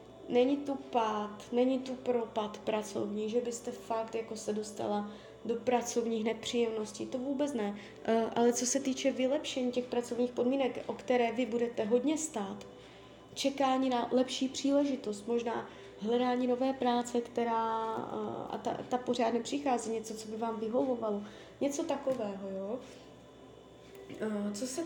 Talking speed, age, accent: 145 wpm, 20-39, native